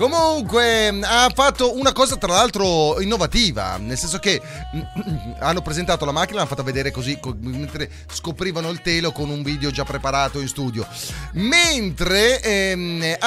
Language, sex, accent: Italian, male, native